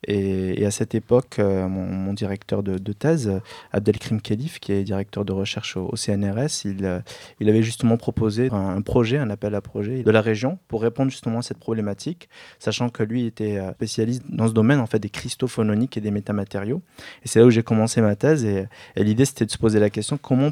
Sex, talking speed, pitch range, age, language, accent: male, 200 wpm, 105-125 Hz, 20-39, French, French